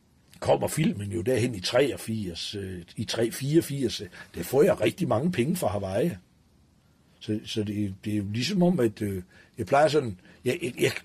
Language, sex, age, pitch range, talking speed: Danish, male, 60-79, 110-175 Hz, 170 wpm